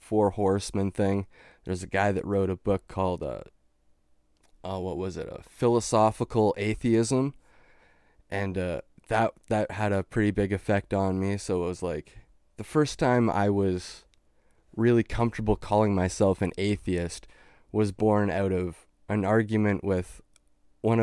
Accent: American